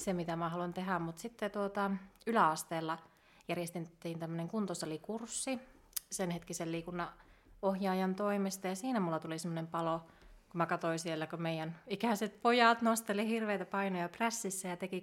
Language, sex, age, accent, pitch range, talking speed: Finnish, female, 30-49, native, 170-205 Hz, 145 wpm